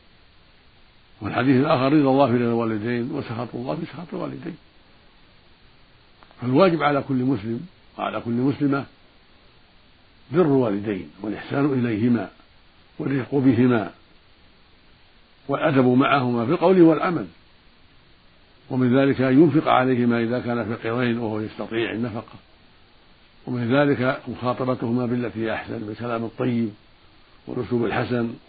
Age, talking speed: 60-79, 100 wpm